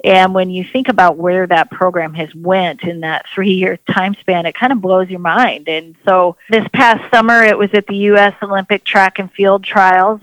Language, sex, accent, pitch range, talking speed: English, female, American, 170-195 Hz, 210 wpm